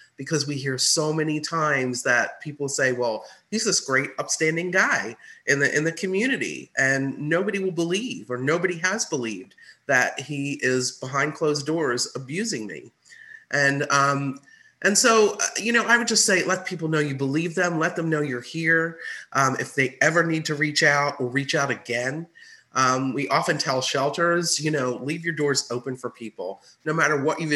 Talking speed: 185 wpm